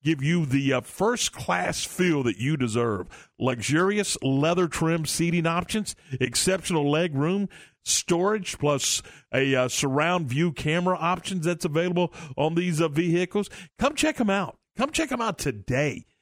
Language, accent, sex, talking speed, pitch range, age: English, American, male, 150 wpm, 125-165 Hz, 50-69